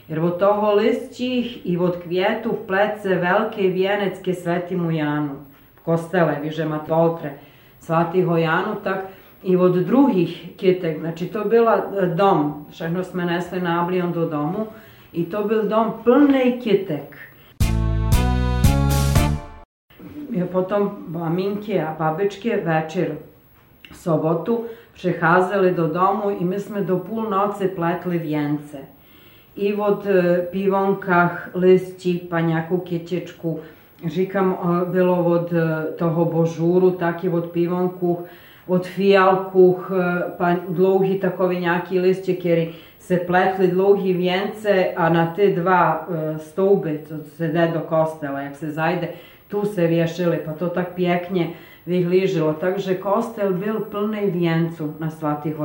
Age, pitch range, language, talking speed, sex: 40-59, 165-190 Hz, Czech, 120 wpm, female